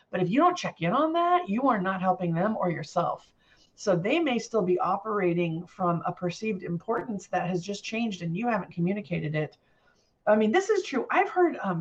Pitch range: 175-230 Hz